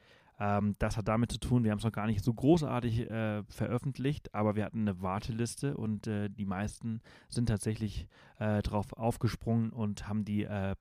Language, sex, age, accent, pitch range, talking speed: German, male, 30-49, German, 105-125 Hz, 185 wpm